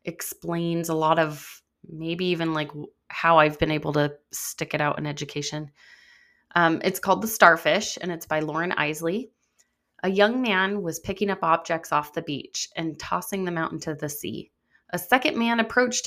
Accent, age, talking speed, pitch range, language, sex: American, 20-39, 180 wpm, 160-200 Hz, English, female